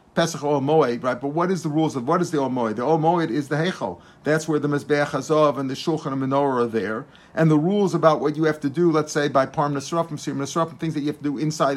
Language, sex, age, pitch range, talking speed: English, male, 50-69, 140-175 Hz, 270 wpm